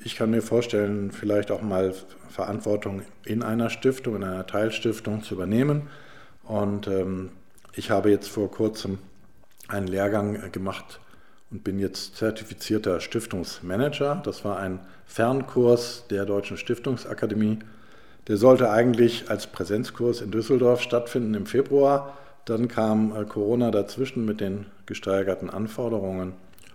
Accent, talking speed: German, 130 wpm